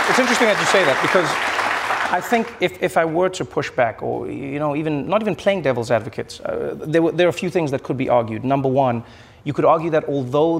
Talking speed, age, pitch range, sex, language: 250 wpm, 30-49, 120-150 Hz, male, English